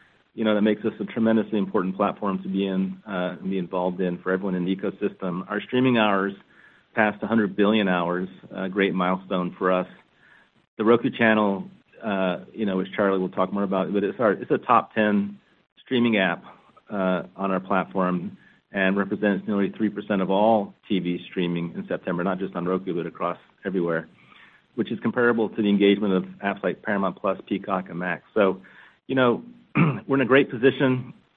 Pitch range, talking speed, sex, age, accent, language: 95-110 Hz, 185 wpm, male, 40-59, American, English